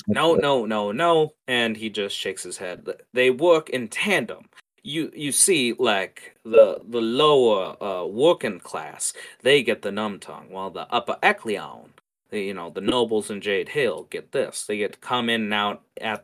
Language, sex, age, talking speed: English, male, 30-49, 185 wpm